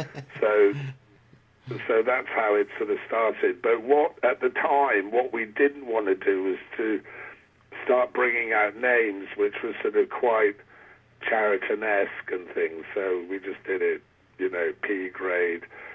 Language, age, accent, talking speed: English, 50-69, British, 155 wpm